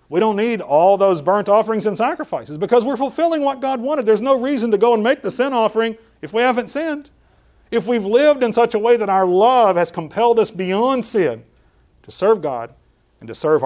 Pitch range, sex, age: 125-210 Hz, male, 40-59